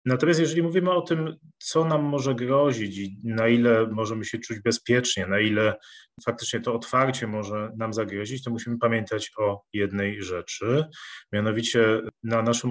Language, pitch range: Polish, 105-125 Hz